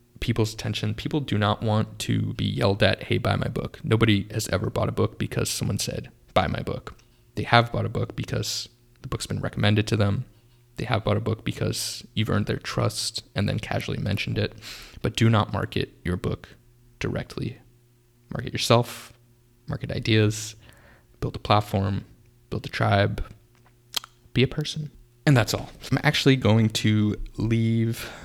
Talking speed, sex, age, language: 170 wpm, male, 20-39, English